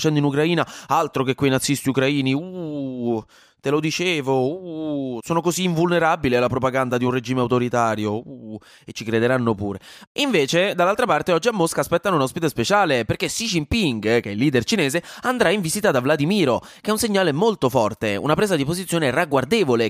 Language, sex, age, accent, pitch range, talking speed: Italian, male, 20-39, native, 125-165 Hz, 185 wpm